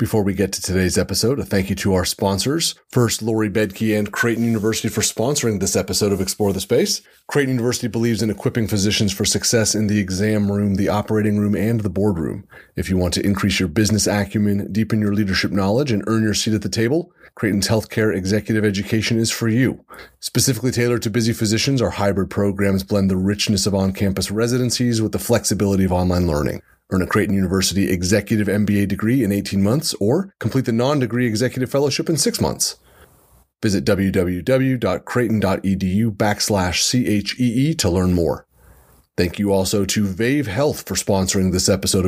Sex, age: male, 30-49